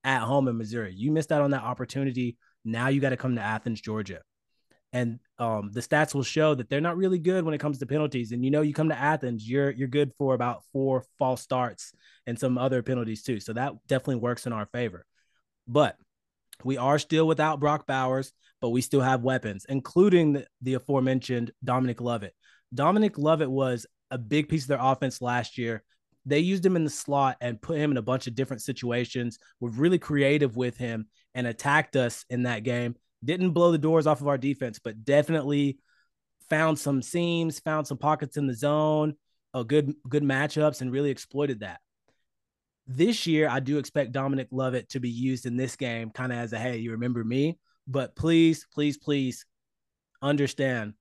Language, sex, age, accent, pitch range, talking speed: English, male, 20-39, American, 120-145 Hz, 200 wpm